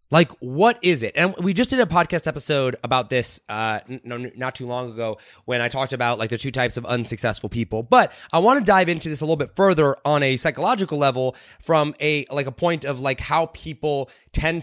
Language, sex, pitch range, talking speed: English, male, 125-185 Hz, 230 wpm